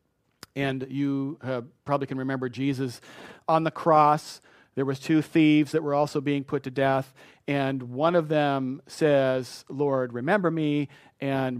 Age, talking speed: 40-59, 155 wpm